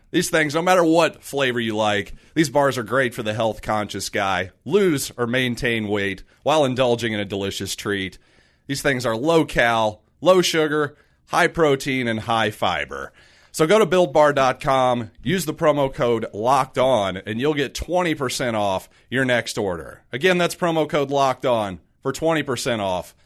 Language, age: English, 40-59